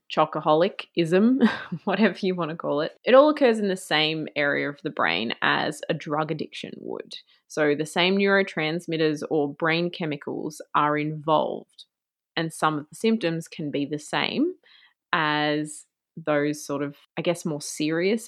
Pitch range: 160-215 Hz